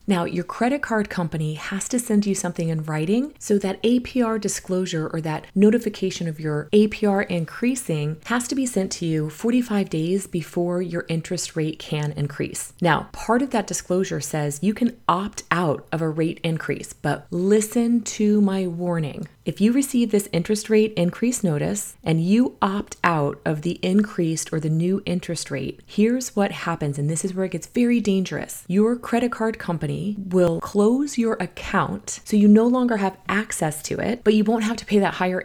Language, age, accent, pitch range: English, 30-49, American, 170-215 Hz